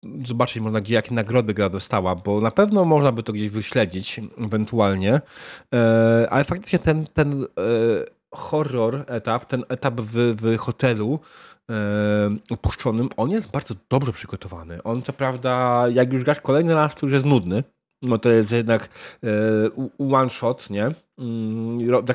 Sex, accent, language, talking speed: male, native, Polish, 145 wpm